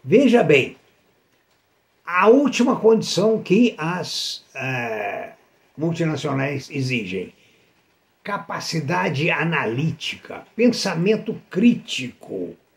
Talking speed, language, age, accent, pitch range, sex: 60 wpm, Portuguese, 60-79, Brazilian, 165-230 Hz, male